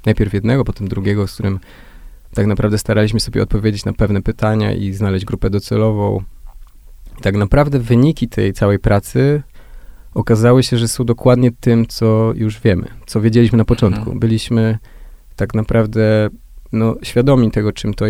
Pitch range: 100-115 Hz